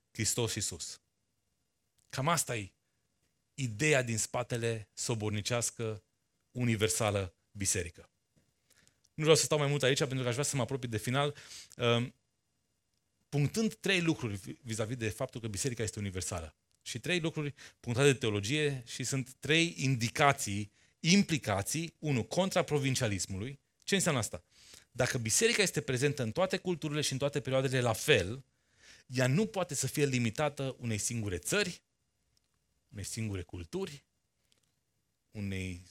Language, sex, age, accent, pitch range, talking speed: Romanian, male, 30-49, native, 100-140 Hz, 135 wpm